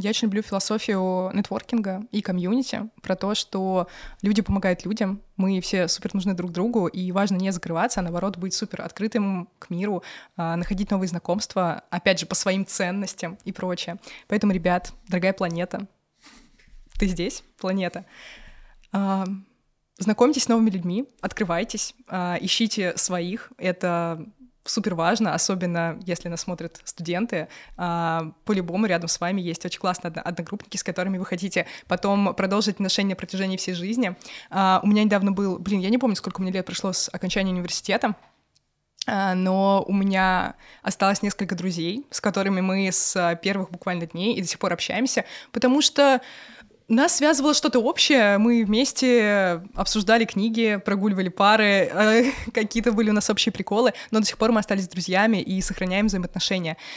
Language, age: Russian, 20-39